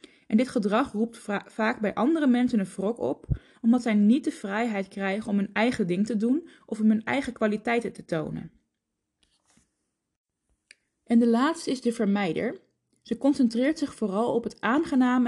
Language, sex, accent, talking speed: Dutch, female, Dutch, 170 wpm